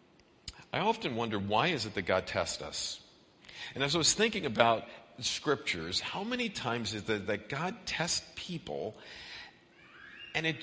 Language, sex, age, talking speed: English, male, 50-69, 160 wpm